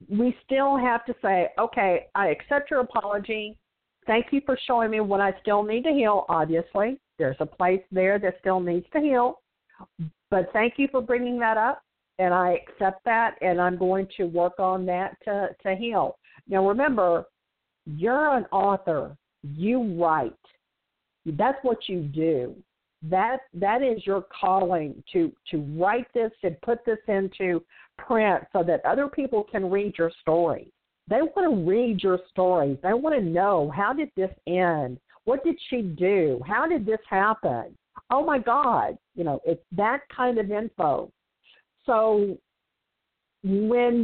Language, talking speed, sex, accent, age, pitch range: English, 160 wpm, female, American, 50-69, 180-235 Hz